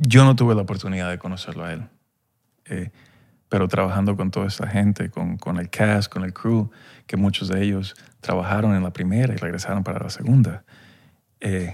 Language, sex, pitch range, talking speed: Spanish, male, 95-115 Hz, 190 wpm